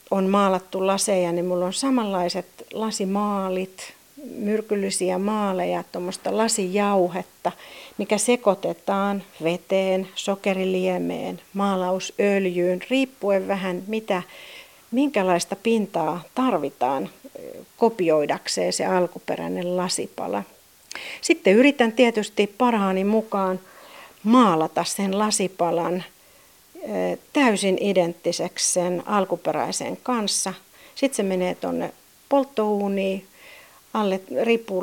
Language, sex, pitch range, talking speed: Finnish, female, 180-220 Hz, 80 wpm